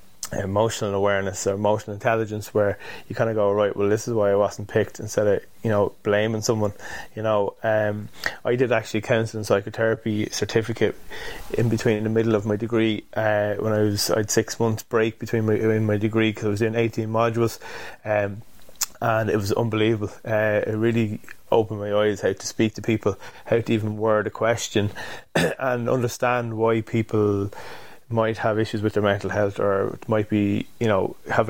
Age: 20-39